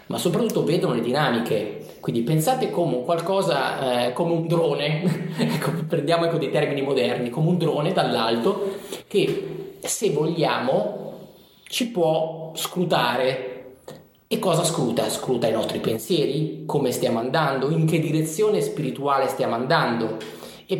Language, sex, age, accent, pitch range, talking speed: Italian, male, 30-49, native, 130-180 Hz, 125 wpm